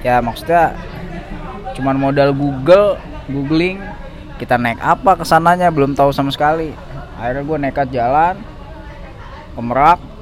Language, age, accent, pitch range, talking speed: Indonesian, 20-39, native, 125-185 Hz, 110 wpm